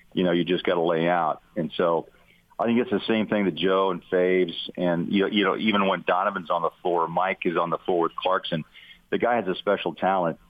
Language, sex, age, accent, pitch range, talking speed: English, male, 40-59, American, 90-105 Hz, 250 wpm